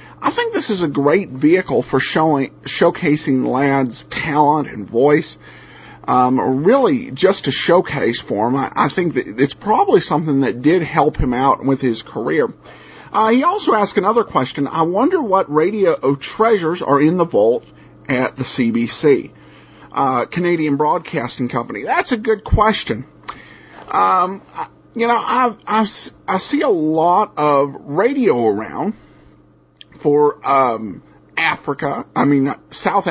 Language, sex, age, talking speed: English, male, 50-69, 145 wpm